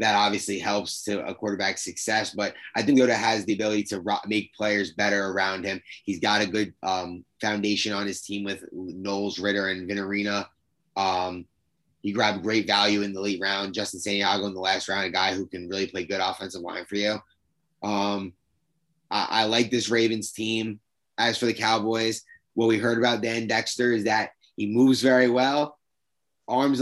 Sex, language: male, English